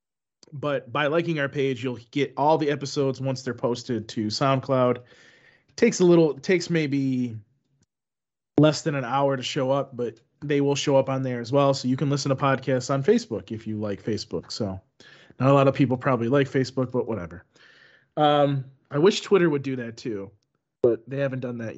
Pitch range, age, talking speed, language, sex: 125-150 Hz, 30-49, 205 wpm, English, male